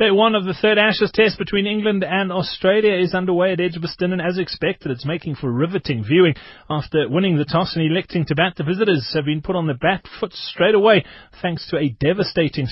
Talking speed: 210 wpm